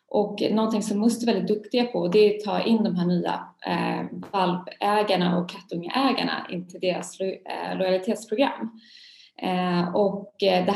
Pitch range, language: 180-220 Hz, Swedish